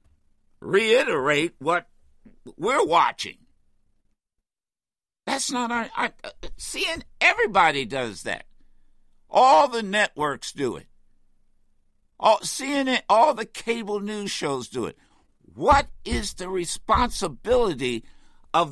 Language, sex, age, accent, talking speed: English, male, 60-79, American, 105 wpm